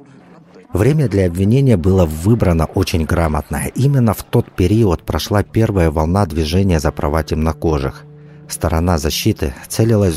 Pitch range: 80-100 Hz